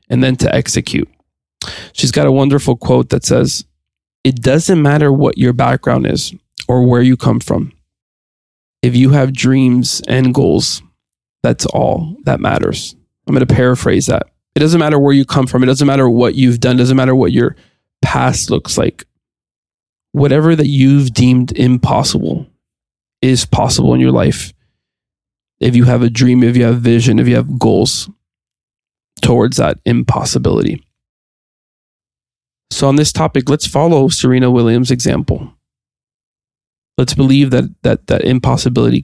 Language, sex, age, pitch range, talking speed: English, male, 20-39, 115-135 Hz, 155 wpm